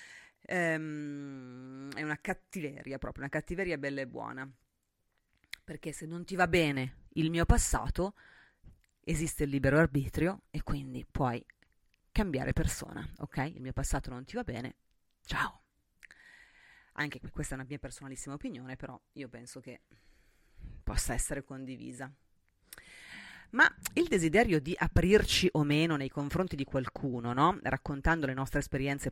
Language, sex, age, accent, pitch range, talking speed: Italian, female, 30-49, native, 135-165 Hz, 140 wpm